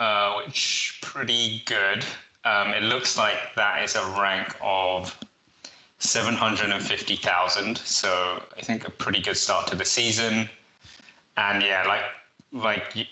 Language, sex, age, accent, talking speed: English, male, 20-39, British, 130 wpm